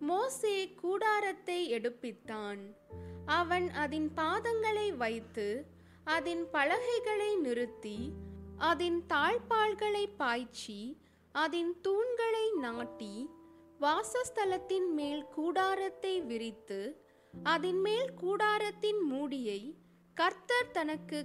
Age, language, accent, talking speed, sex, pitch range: 20-39, Tamil, native, 75 wpm, female, 240-395 Hz